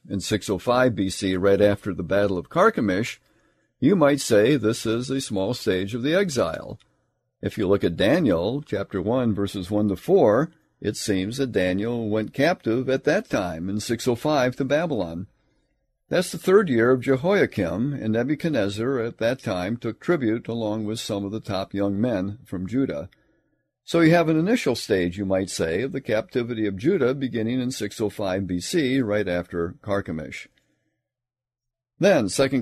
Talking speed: 165 wpm